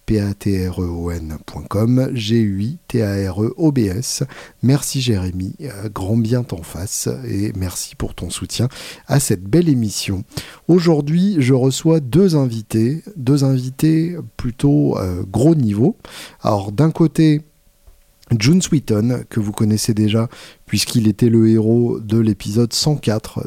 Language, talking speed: French, 130 wpm